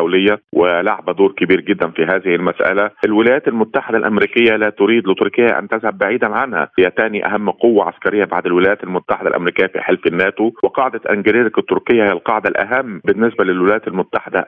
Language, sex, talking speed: Arabic, male, 160 wpm